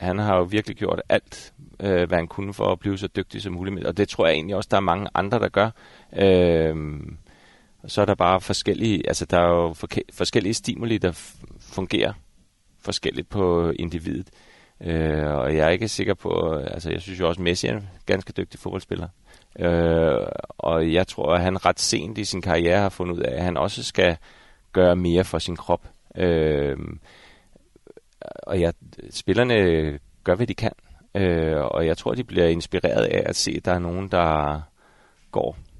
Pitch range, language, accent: 85-100 Hz, Danish, native